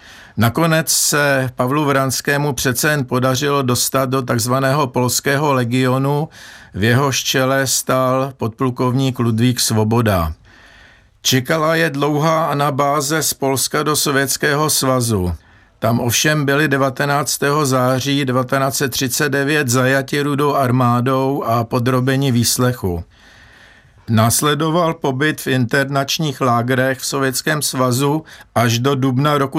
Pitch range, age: 125-145 Hz, 50-69